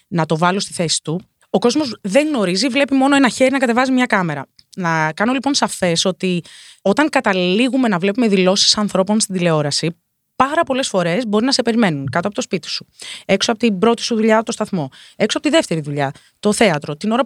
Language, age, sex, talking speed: Greek, 20-39, female, 210 wpm